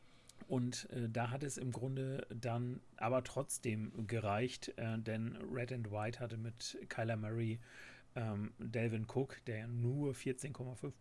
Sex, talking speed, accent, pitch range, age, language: male, 125 wpm, German, 110-130 Hz, 40-59, German